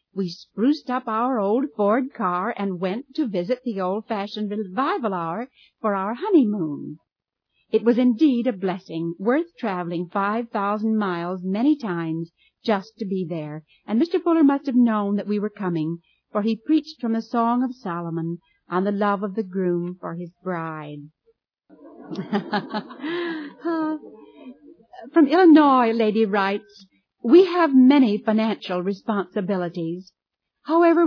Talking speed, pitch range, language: 135 wpm, 185-255 Hz, English